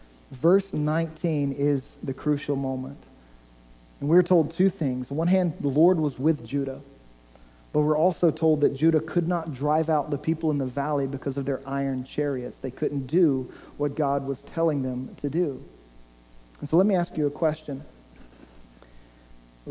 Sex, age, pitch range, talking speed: male, 40-59, 135-170 Hz, 175 wpm